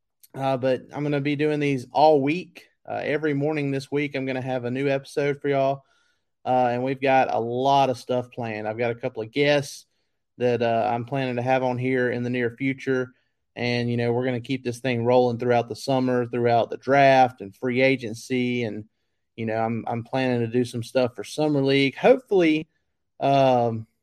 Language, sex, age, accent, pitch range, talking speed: English, male, 30-49, American, 120-140 Hz, 210 wpm